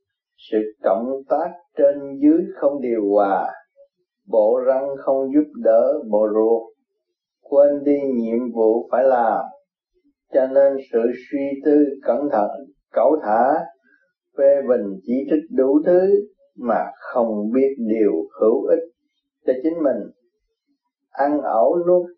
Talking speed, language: 130 wpm, Vietnamese